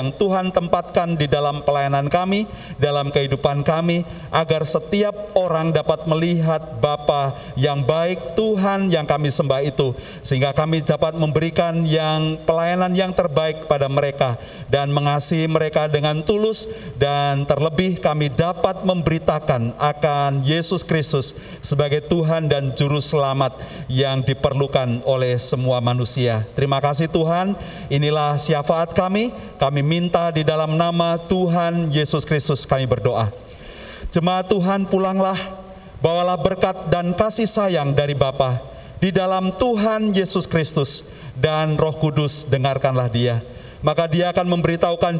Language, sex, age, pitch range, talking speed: Indonesian, male, 40-59, 140-175 Hz, 125 wpm